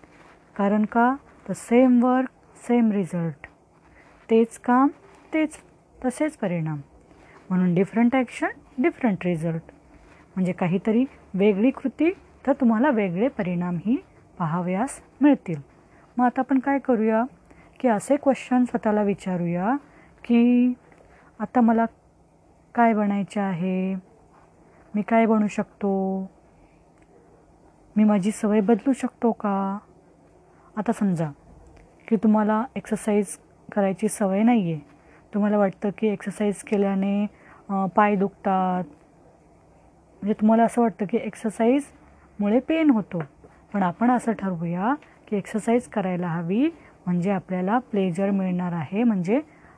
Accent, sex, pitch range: native, female, 185-240 Hz